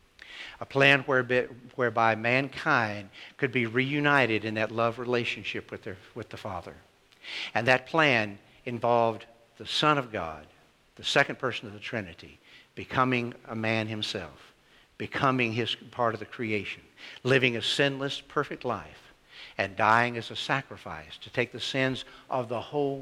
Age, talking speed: 60-79, 150 wpm